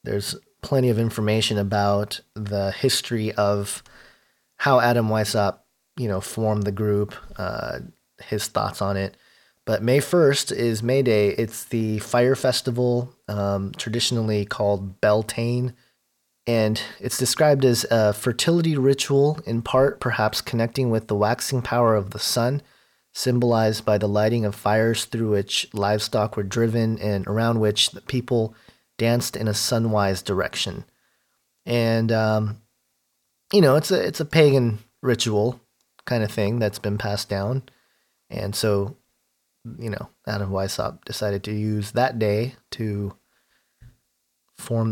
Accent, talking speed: American, 140 wpm